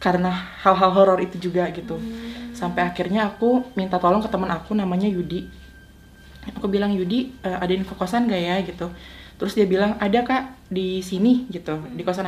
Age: 20-39